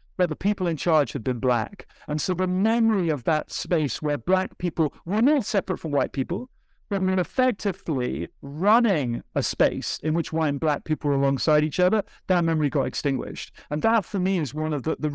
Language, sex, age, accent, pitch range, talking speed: English, male, 50-69, British, 150-180 Hz, 205 wpm